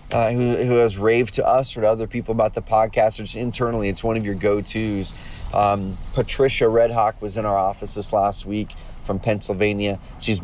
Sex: male